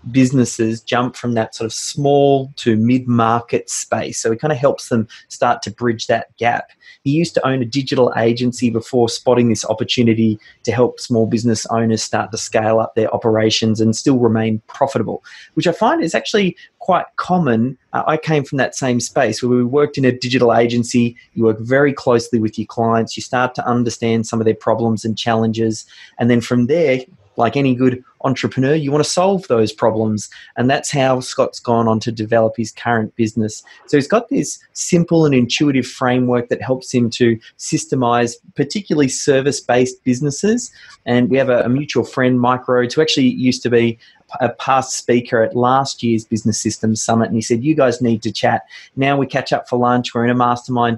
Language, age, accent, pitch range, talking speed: English, 30-49, Australian, 115-135 Hz, 195 wpm